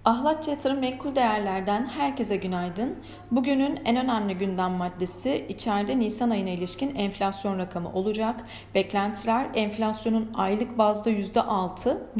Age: 40-59